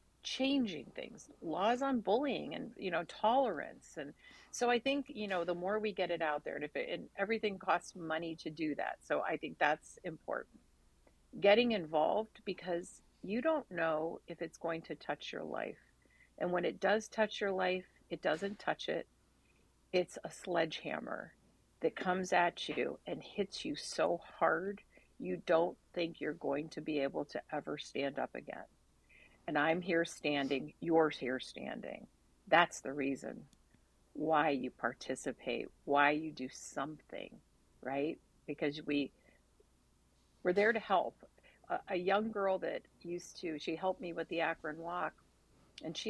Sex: female